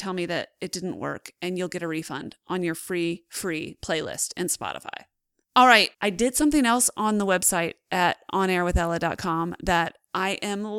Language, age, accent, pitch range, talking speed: English, 30-49, American, 190-265 Hz, 180 wpm